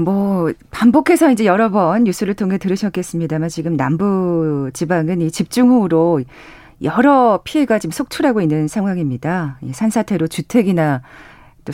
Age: 40-59